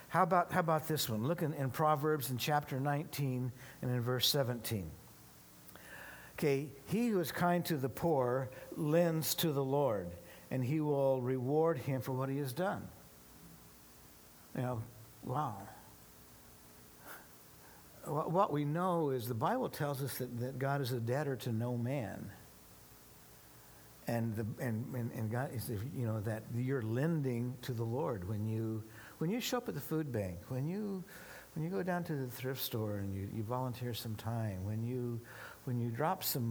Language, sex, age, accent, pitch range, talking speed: English, male, 60-79, American, 110-150 Hz, 175 wpm